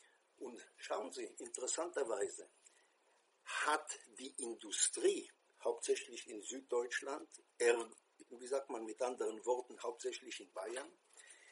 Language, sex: English, male